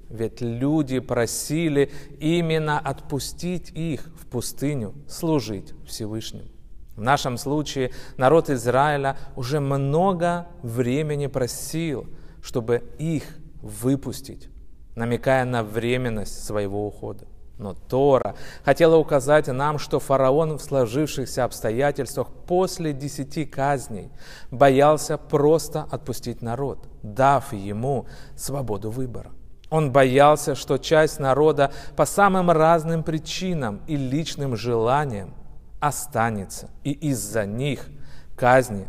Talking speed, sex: 100 wpm, male